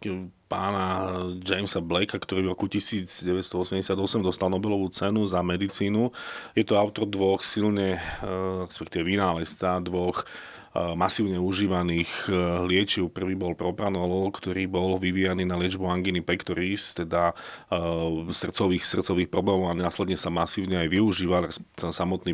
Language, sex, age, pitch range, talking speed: Slovak, male, 30-49, 90-100 Hz, 120 wpm